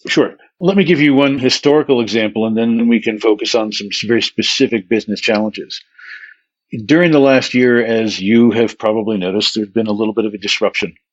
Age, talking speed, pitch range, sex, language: 60-79, 195 wpm, 110-140 Hz, male, English